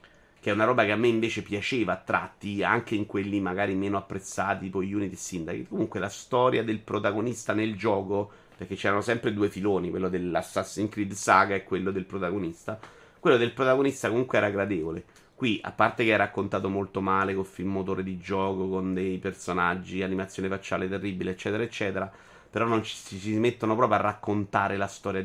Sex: male